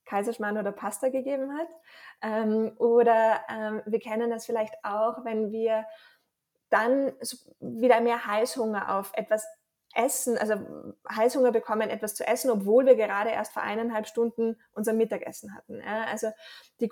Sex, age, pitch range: female, 20-39, 215-245 Hz